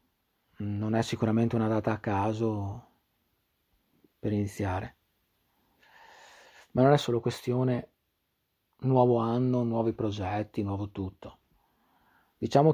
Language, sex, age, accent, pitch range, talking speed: Italian, male, 40-59, native, 105-125 Hz, 100 wpm